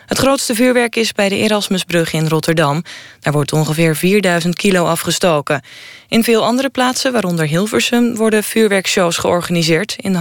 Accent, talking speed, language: Dutch, 155 wpm, Dutch